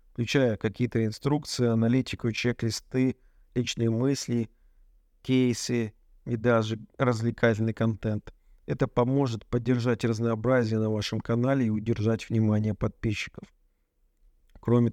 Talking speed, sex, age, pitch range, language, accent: 95 wpm, male, 40-59, 110-125 Hz, Russian, native